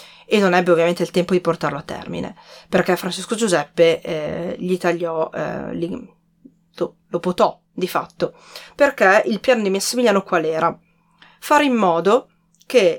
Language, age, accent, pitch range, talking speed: Italian, 30-49, native, 175-230 Hz, 150 wpm